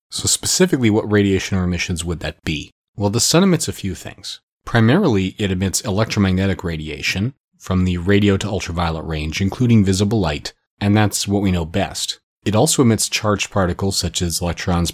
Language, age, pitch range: English, 30-49, 90-105 Hz